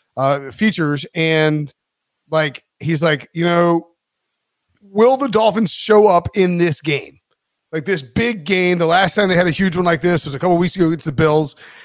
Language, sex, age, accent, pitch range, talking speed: English, male, 30-49, American, 160-200 Hz, 190 wpm